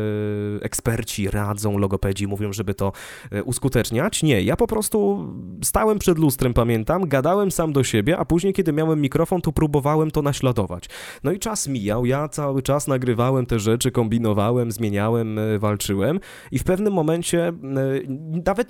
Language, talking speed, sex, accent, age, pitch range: Polish, 150 wpm, male, native, 20-39, 115-155 Hz